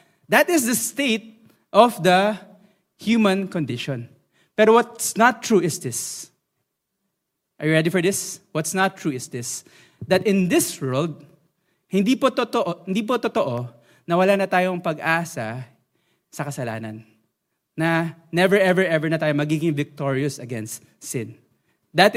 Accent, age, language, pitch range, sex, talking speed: Filipino, 20-39, English, 150-225 Hz, male, 140 wpm